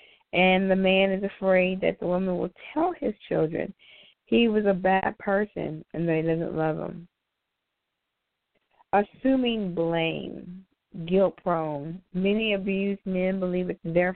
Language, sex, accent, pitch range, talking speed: English, female, American, 170-205 Hz, 135 wpm